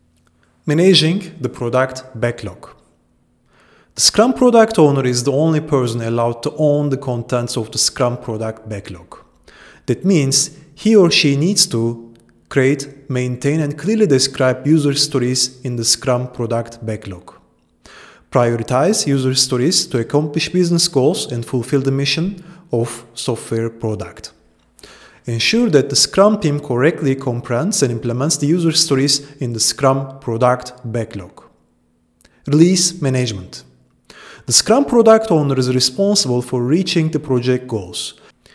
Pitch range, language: 115-145 Hz, English